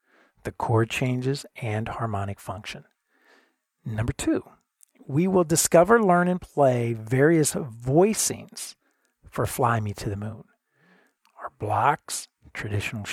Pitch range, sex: 115-155 Hz, male